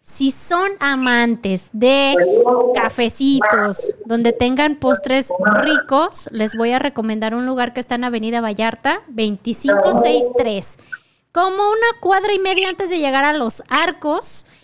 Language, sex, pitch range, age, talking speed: Spanish, female, 230-315 Hz, 20-39, 130 wpm